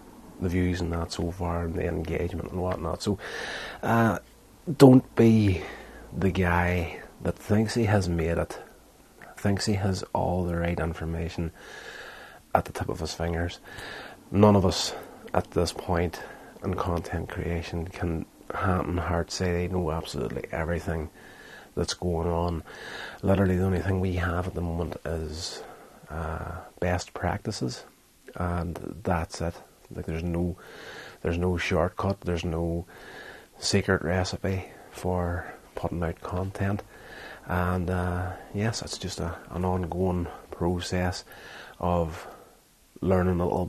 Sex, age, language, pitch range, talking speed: male, 30-49, English, 85-95 Hz, 135 wpm